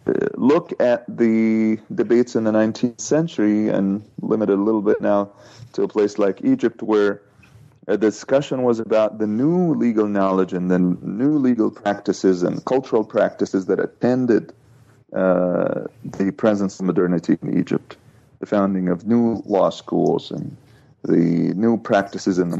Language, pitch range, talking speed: English, 100-125 Hz, 150 wpm